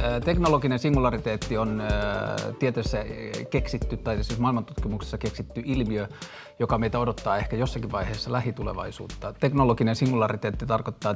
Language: Finnish